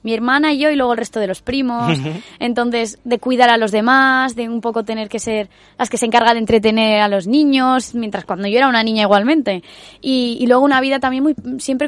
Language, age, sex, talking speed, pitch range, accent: Spanish, 20-39, female, 235 wpm, 220-255 Hz, Spanish